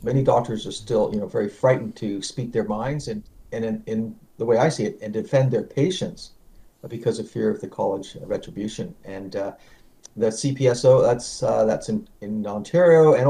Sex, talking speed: male, 190 wpm